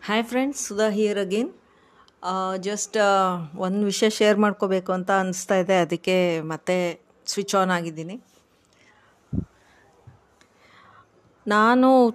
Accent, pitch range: native, 185-225 Hz